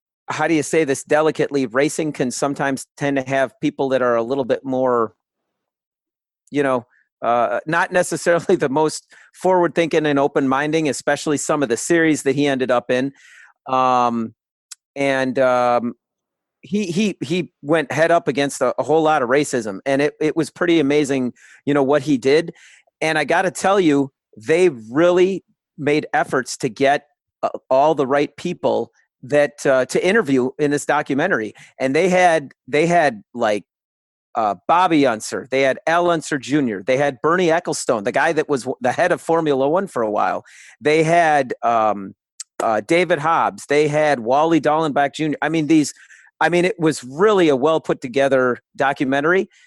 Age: 40-59